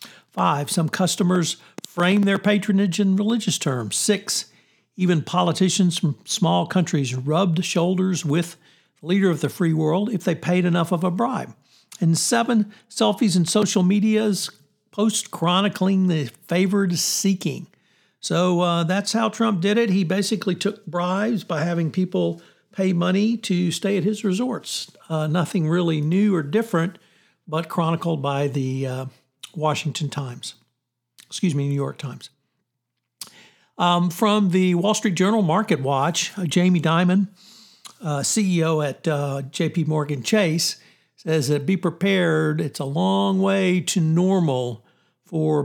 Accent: American